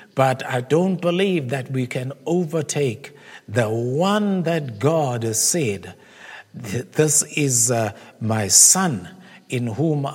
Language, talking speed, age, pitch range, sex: English, 125 wpm, 60-79, 125-160 Hz, male